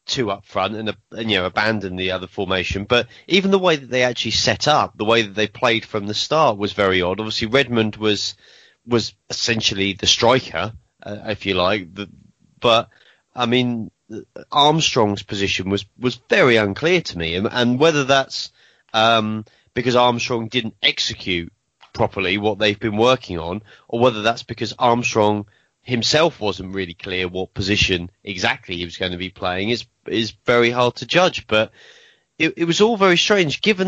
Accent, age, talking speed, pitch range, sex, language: British, 30-49, 180 wpm, 105-140 Hz, male, English